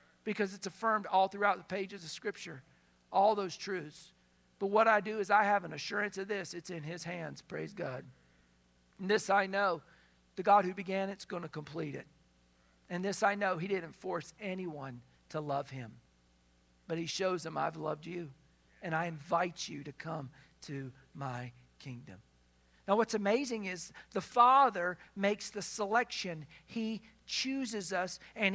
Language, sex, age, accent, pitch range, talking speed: English, male, 50-69, American, 170-225 Hz, 175 wpm